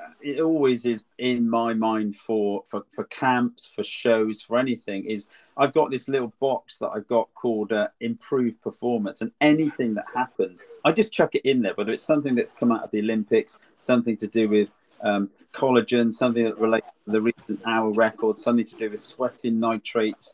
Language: English